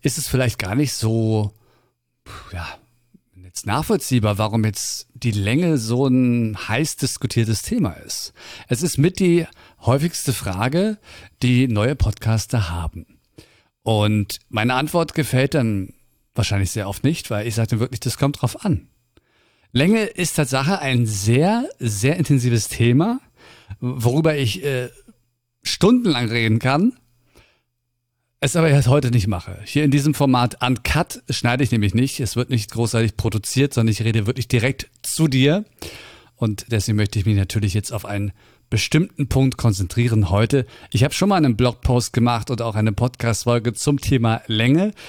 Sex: male